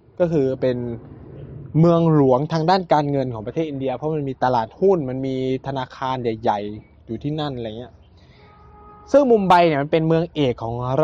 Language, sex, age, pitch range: Thai, male, 20-39, 115-170 Hz